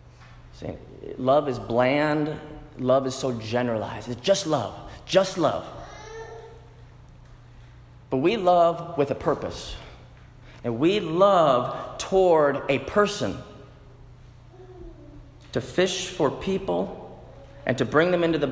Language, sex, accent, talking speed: English, male, American, 115 wpm